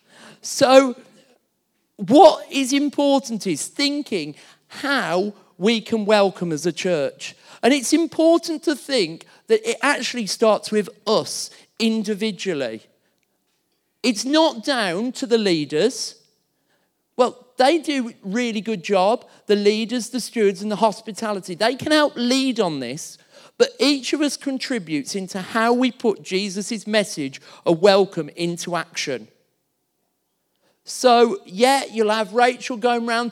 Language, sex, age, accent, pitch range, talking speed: English, male, 40-59, British, 205-260 Hz, 130 wpm